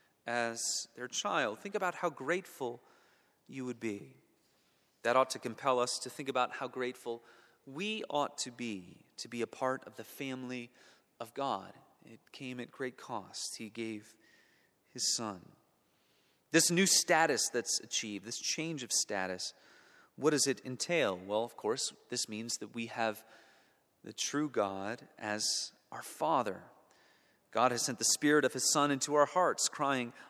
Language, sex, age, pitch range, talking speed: English, male, 30-49, 115-150 Hz, 160 wpm